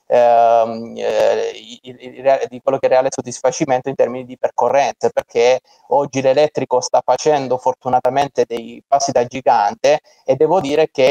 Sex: male